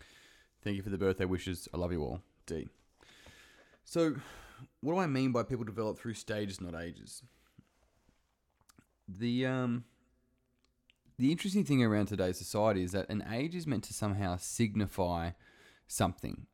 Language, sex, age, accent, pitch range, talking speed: English, male, 20-39, Australian, 90-115 Hz, 150 wpm